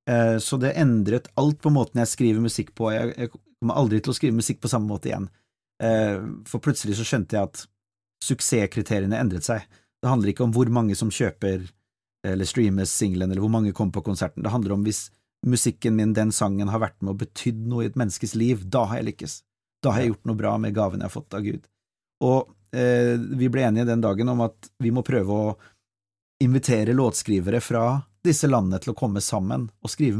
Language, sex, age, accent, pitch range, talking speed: Swedish, male, 30-49, native, 105-125 Hz, 215 wpm